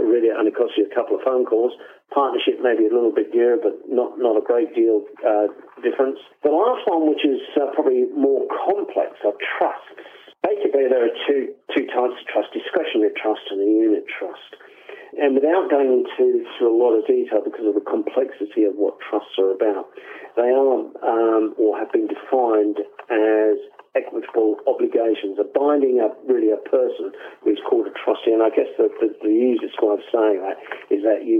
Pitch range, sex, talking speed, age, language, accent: 330-435 Hz, male, 195 wpm, 50-69, English, British